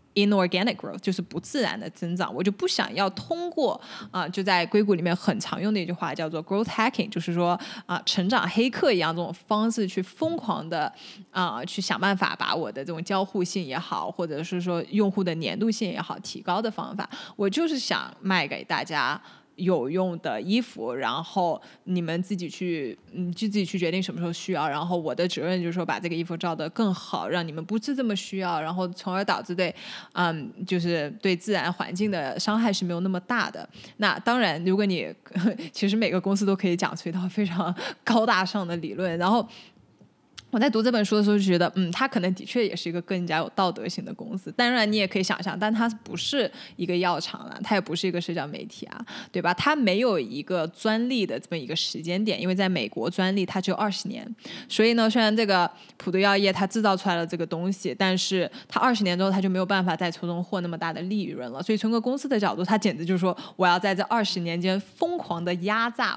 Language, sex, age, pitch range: Chinese, female, 20-39, 175-215 Hz